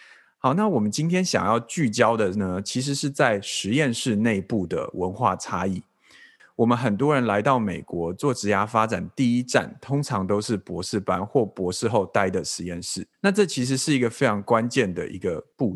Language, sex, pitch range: Chinese, male, 95-135 Hz